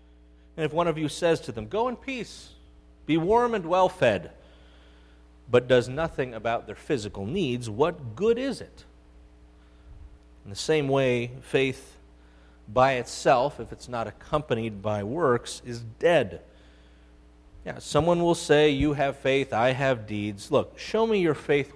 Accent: American